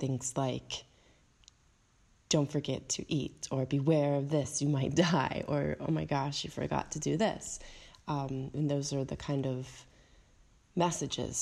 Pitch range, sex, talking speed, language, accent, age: 125-145 Hz, female, 160 wpm, English, American, 20-39